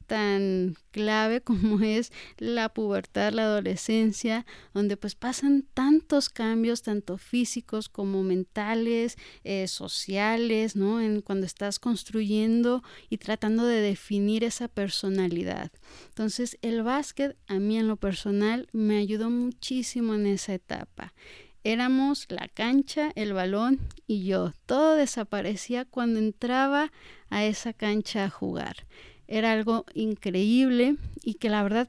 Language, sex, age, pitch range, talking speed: Spanish, female, 30-49, 200-240 Hz, 125 wpm